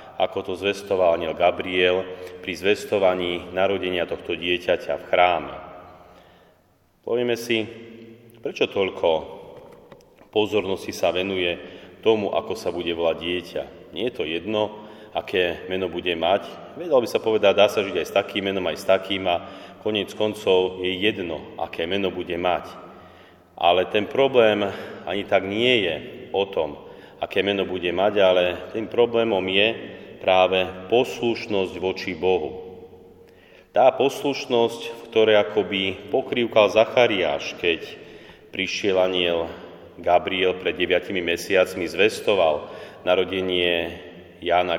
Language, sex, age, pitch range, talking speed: Slovak, male, 30-49, 90-105 Hz, 125 wpm